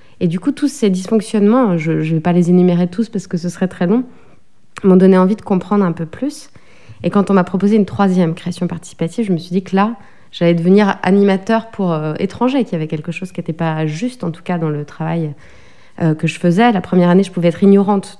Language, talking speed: French, 245 wpm